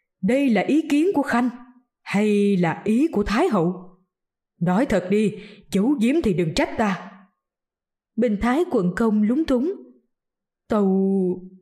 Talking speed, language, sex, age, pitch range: 145 wpm, Vietnamese, female, 20-39, 190-255 Hz